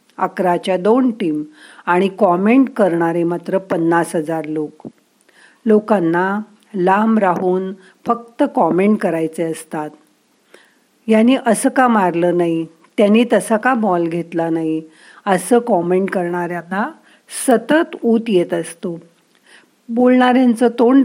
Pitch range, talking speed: 170-230 Hz, 105 wpm